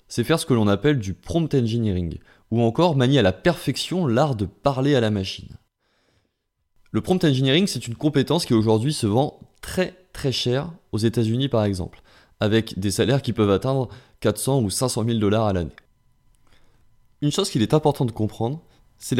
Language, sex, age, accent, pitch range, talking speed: French, male, 20-39, French, 110-145 Hz, 190 wpm